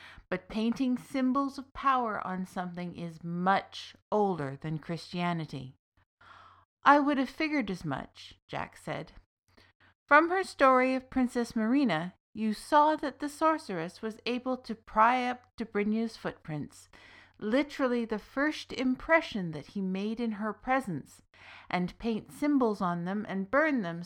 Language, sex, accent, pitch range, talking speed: English, female, American, 175-250 Hz, 140 wpm